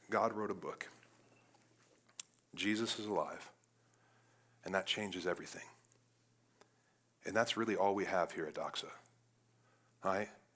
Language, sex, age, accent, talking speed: English, male, 40-59, American, 125 wpm